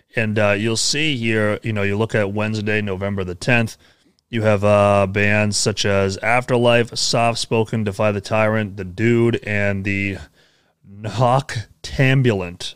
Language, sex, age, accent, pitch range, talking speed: English, male, 30-49, American, 95-115 Hz, 140 wpm